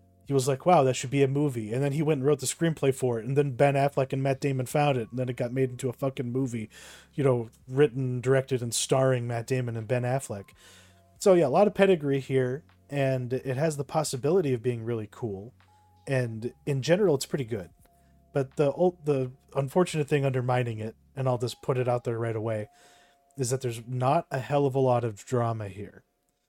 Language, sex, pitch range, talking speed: English, male, 120-145 Hz, 225 wpm